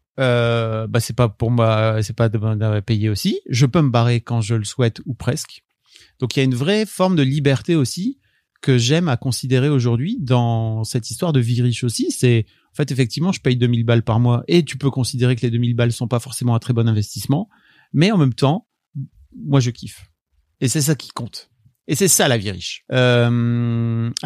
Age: 30-49